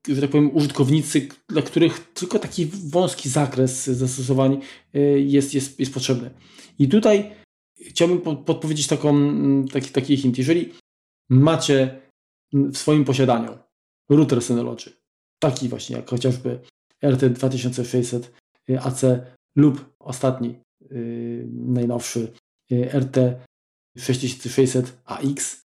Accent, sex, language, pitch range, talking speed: native, male, Polish, 120-140 Hz, 95 wpm